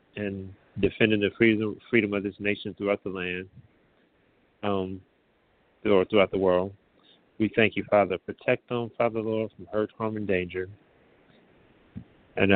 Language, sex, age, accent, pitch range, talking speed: English, male, 30-49, American, 95-100 Hz, 145 wpm